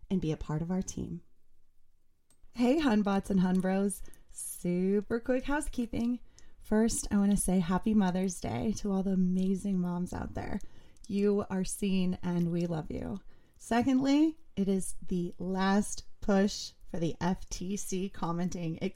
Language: English